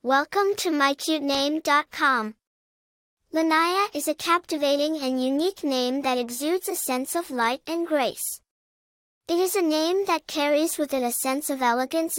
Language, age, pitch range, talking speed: English, 10-29, 270-330 Hz, 150 wpm